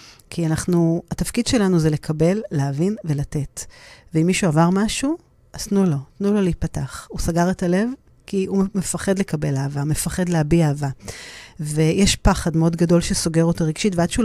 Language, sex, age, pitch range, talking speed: Hebrew, female, 40-59, 155-185 Hz, 165 wpm